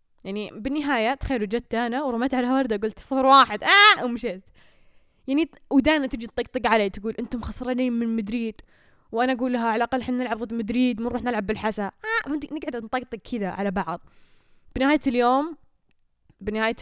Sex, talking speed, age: female, 165 wpm, 10-29